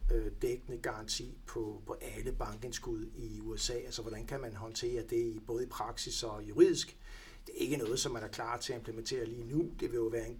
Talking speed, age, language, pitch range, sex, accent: 220 wpm, 60-79, Danish, 115-160 Hz, male, native